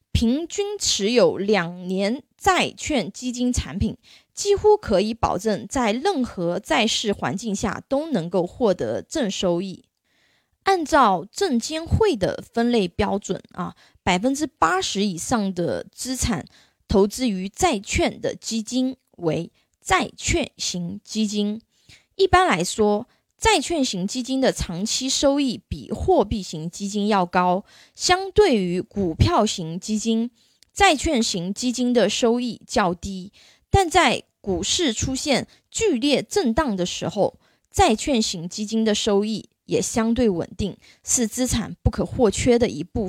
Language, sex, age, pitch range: Chinese, female, 20-39, 195-270 Hz